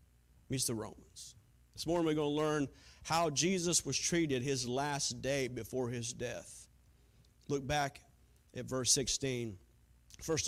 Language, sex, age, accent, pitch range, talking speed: English, male, 40-59, American, 130-195 Hz, 145 wpm